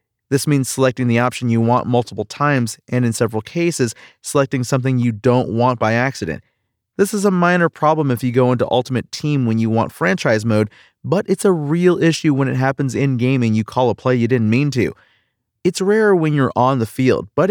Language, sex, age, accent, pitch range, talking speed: English, male, 30-49, American, 115-150 Hz, 215 wpm